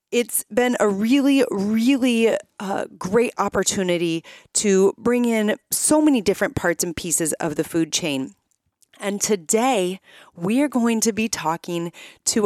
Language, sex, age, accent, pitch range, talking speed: English, female, 30-49, American, 170-225 Hz, 145 wpm